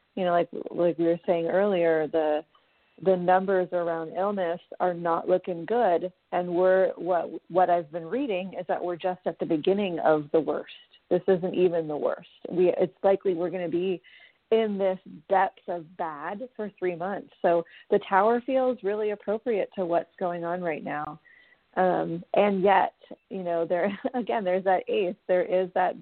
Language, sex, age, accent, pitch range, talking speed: English, female, 40-59, American, 170-195 Hz, 180 wpm